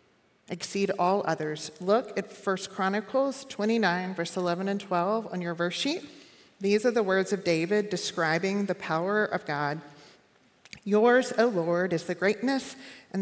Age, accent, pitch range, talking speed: 40-59, American, 175-210 Hz, 155 wpm